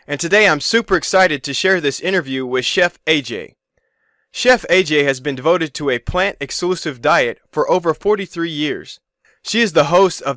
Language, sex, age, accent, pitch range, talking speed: English, male, 20-39, American, 140-185 Hz, 180 wpm